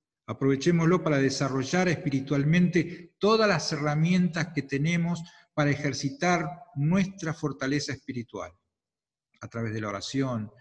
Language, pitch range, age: Spanish, 115-155 Hz, 50-69